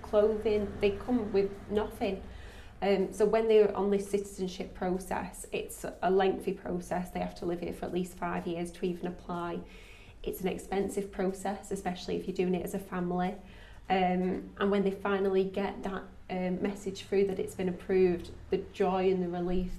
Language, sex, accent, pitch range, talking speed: English, female, British, 180-200 Hz, 190 wpm